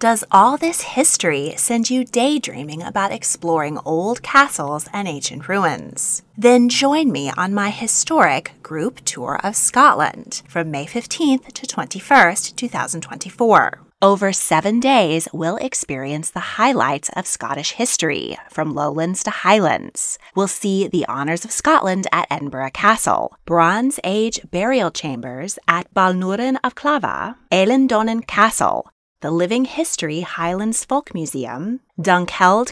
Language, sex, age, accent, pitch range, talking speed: English, female, 20-39, American, 165-240 Hz, 130 wpm